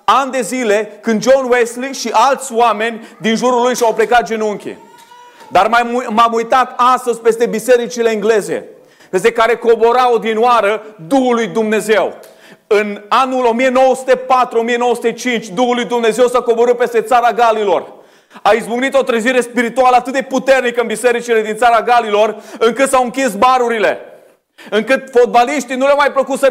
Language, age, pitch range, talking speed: Romanian, 30-49, 235-270 Hz, 145 wpm